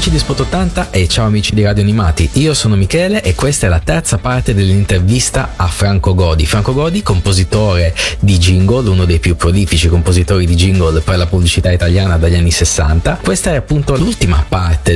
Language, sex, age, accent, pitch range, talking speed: Italian, male, 30-49, native, 85-105 Hz, 190 wpm